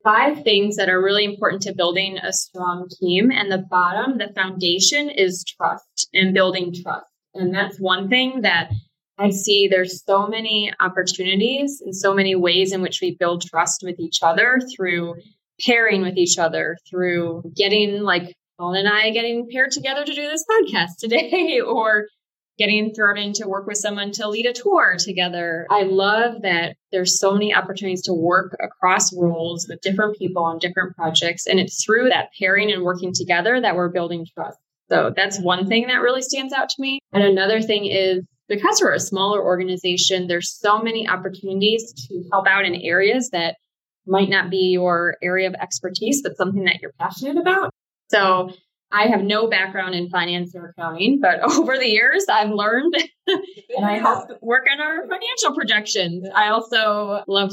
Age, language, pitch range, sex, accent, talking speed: 20-39, English, 180-220 Hz, female, American, 180 wpm